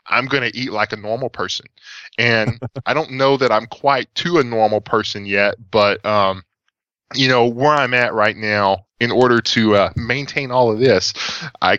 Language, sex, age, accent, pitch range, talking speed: English, male, 10-29, American, 105-130 Hz, 195 wpm